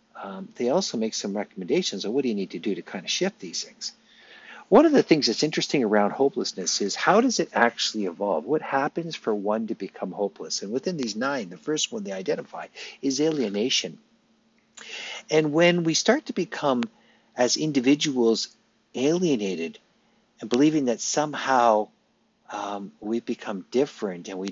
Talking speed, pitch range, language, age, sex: 170 wpm, 95-135 Hz, English, 50-69, male